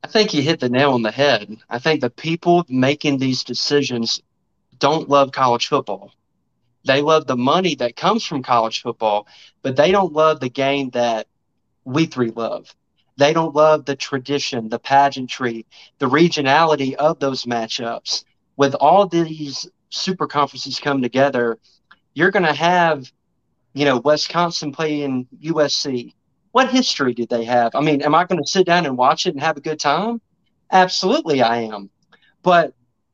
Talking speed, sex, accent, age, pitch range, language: 165 wpm, male, American, 30-49, 125-160 Hz, English